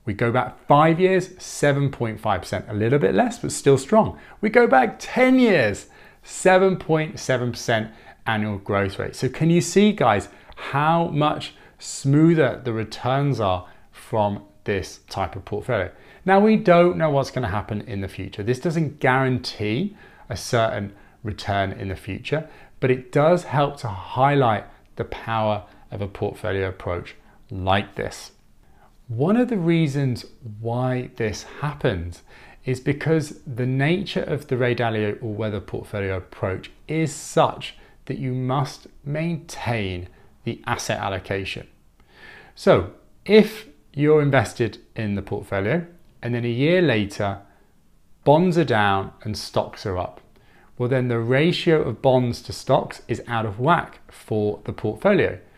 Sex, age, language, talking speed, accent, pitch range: male, 30-49, English, 145 wpm, British, 105-150 Hz